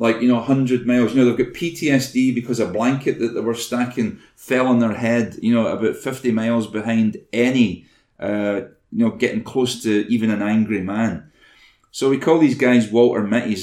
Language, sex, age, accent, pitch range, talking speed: English, male, 30-49, British, 110-125 Hz, 200 wpm